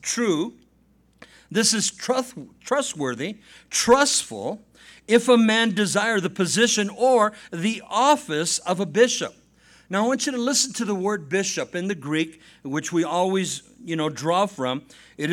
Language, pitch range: English, 185-225 Hz